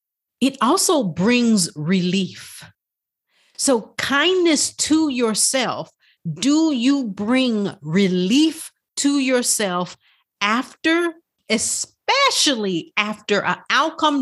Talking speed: 80 wpm